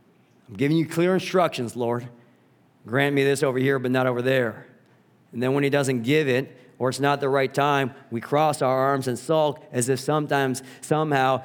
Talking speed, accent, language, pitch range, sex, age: 200 wpm, American, English, 130-150 Hz, male, 40-59